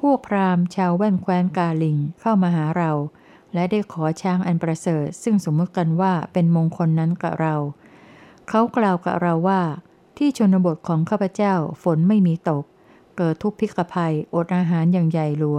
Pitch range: 160-190 Hz